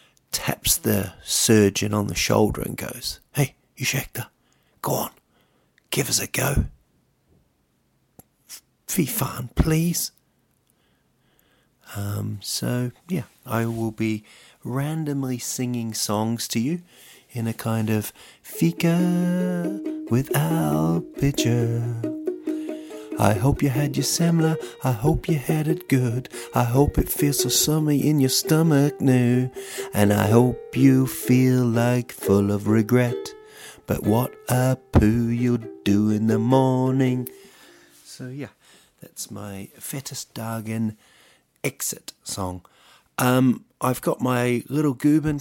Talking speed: 120 wpm